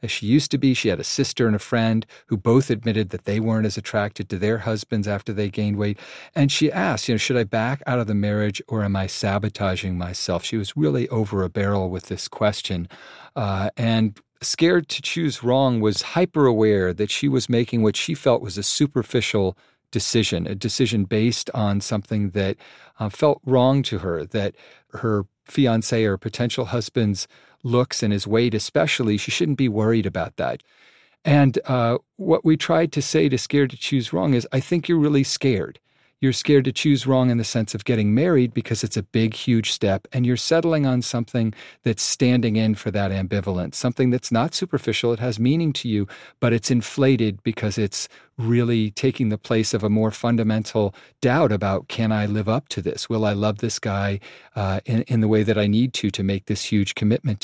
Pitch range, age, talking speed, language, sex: 105-130 Hz, 40-59, 205 wpm, English, male